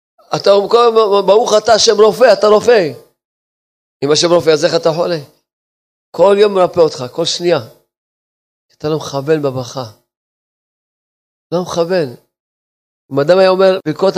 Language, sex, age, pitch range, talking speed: Hebrew, male, 40-59, 130-190 Hz, 140 wpm